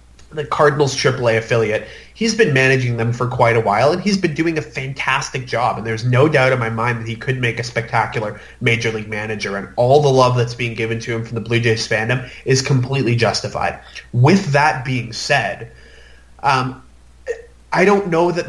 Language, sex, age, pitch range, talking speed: English, male, 20-39, 115-140 Hz, 200 wpm